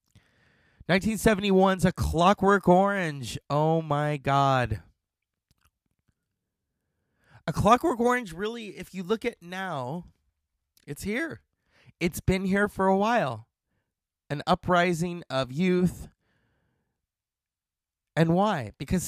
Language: English